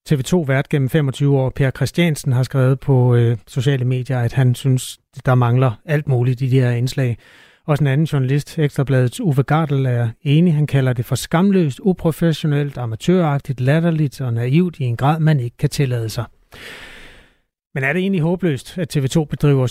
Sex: male